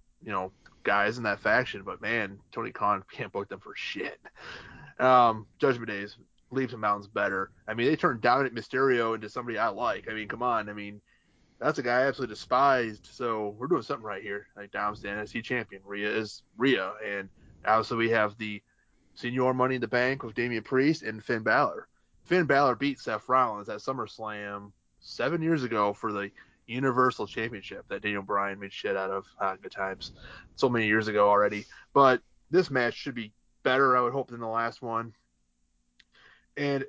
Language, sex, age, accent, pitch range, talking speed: English, male, 20-39, American, 105-125 Hz, 190 wpm